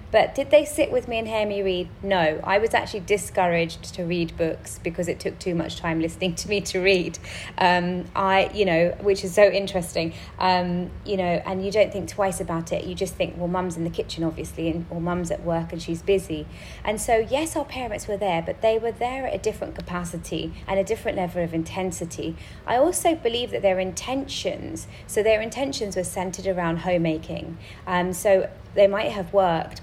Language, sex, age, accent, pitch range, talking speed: English, female, 30-49, British, 170-210 Hz, 210 wpm